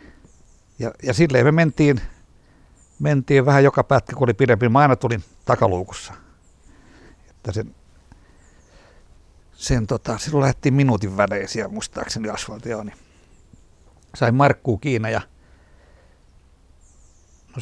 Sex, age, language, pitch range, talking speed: male, 60-79, Finnish, 95-140 Hz, 110 wpm